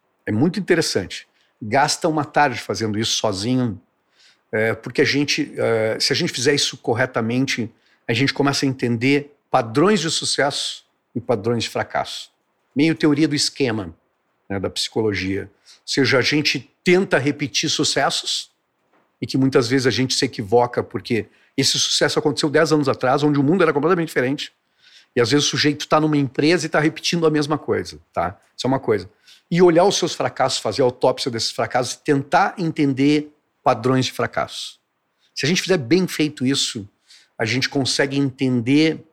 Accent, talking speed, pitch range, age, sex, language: Brazilian, 170 wpm, 120-150 Hz, 50-69, male, Portuguese